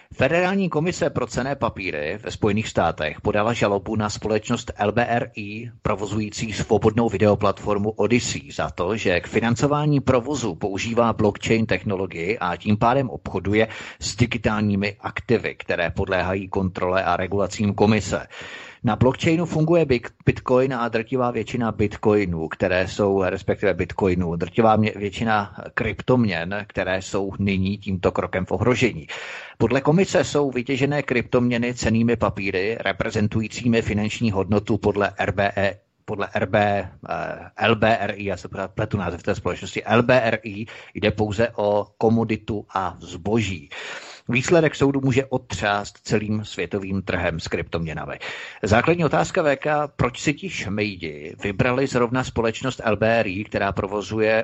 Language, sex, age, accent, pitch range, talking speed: Czech, male, 30-49, native, 100-115 Hz, 120 wpm